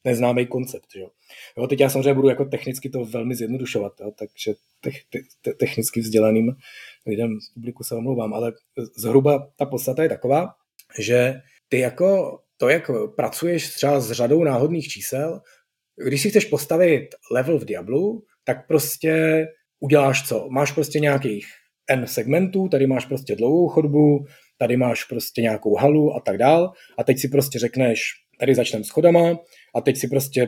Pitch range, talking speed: 120-155 Hz, 160 wpm